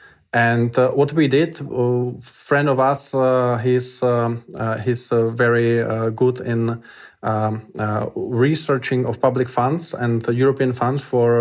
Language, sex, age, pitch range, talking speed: German, male, 20-39, 120-135 Hz, 165 wpm